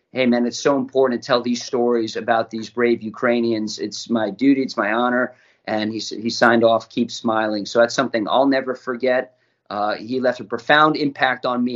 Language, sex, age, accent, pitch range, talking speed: English, male, 40-59, American, 120-135 Hz, 205 wpm